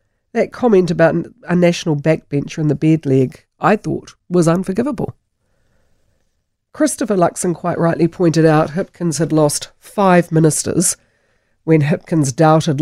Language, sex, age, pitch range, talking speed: English, female, 50-69, 140-180 Hz, 125 wpm